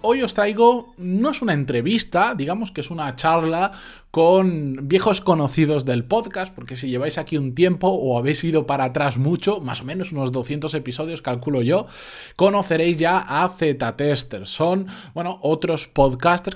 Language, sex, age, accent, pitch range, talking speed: Spanish, male, 20-39, Spanish, 125-170 Hz, 165 wpm